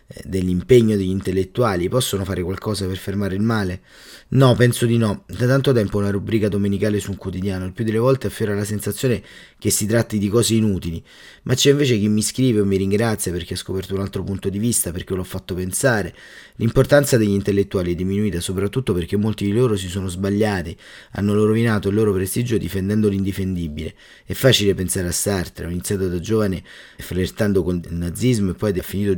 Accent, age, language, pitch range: native, 30-49, Italian, 90-110 Hz